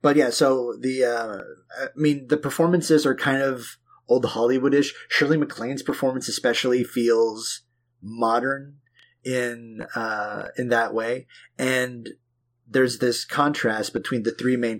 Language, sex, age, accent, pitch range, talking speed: English, male, 30-49, American, 115-135 Hz, 135 wpm